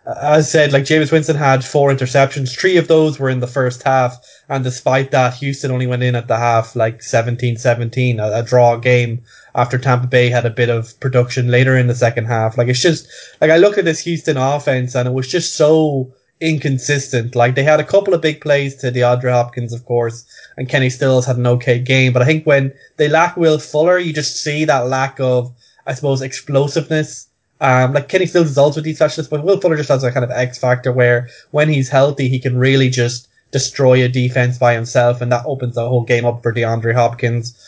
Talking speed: 225 wpm